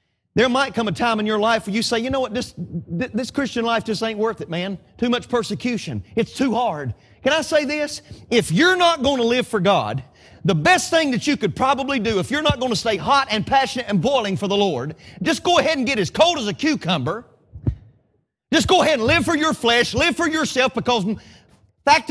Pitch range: 190-275 Hz